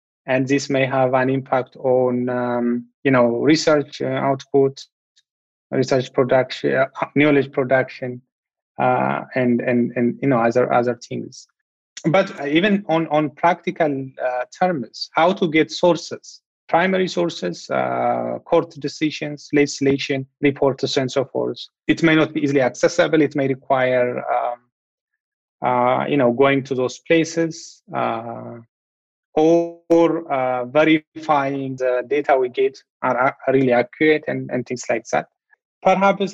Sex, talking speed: male, 135 wpm